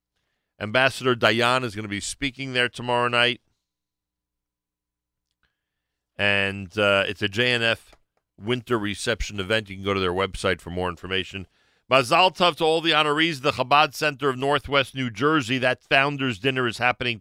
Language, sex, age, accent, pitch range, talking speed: English, male, 50-69, American, 85-125 Hz, 160 wpm